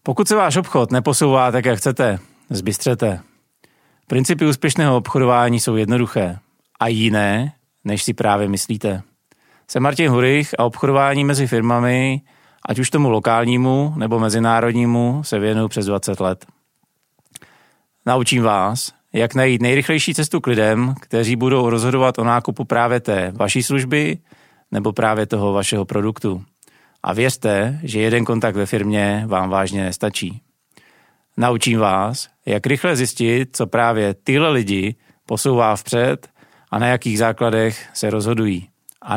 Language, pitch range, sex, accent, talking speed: Czech, 105-130 Hz, male, native, 135 wpm